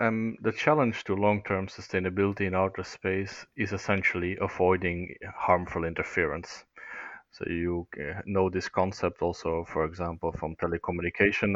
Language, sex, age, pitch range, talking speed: English, male, 30-49, 85-100 Hz, 130 wpm